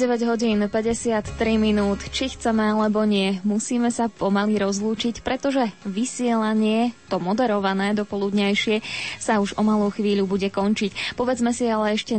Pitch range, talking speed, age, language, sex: 205-240 Hz, 140 wpm, 20-39, Slovak, female